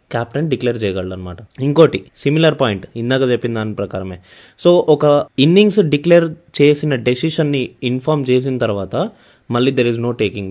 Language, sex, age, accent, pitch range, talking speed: Telugu, male, 20-39, native, 125-170 Hz, 135 wpm